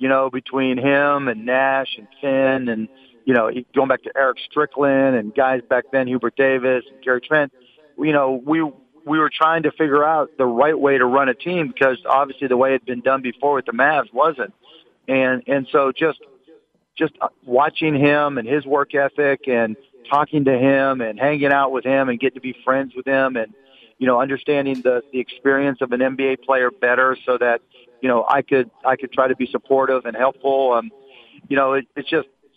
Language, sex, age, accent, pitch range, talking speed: English, male, 40-59, American, 130-145 Hz, 210 wpm